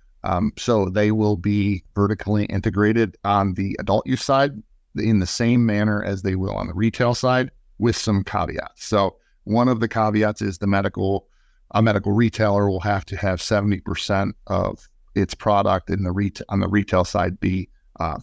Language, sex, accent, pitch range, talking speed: English, male, American, 95-110 Hz, 180 wpm